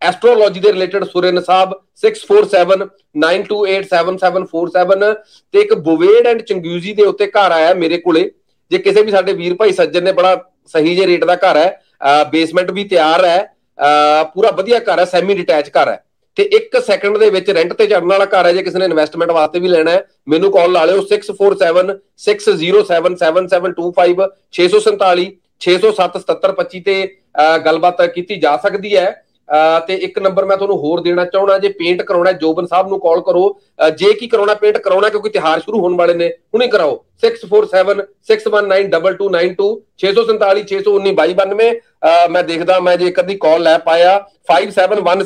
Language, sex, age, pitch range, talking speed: Punjabi, male, 40-59, 180-215 Hz, 150 wpm